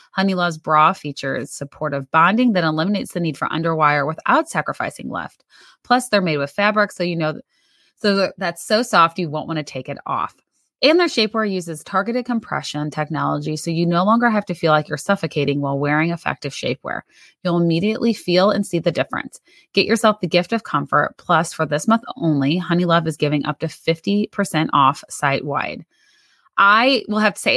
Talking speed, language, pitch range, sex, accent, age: 185 wpm, English, 160-210 Hz, female, American, 30-49